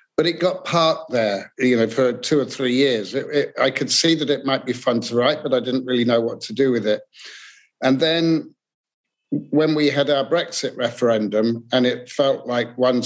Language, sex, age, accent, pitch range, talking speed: English, male, 50-69, British, 115-140 Hz, 205 wpm